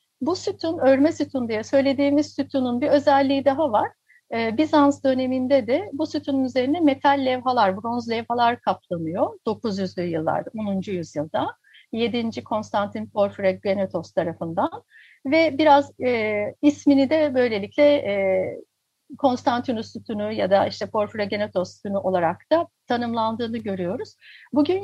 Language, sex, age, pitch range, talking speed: Turkish, female, 60-79, 205-285 Hz, 120 wpm